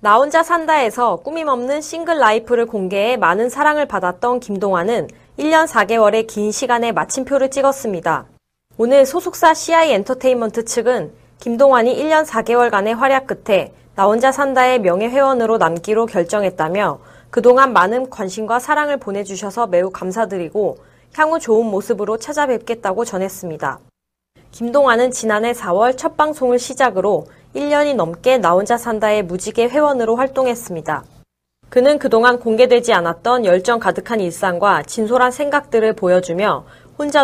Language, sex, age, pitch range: Korean, female, 20-39, 200-275 Hz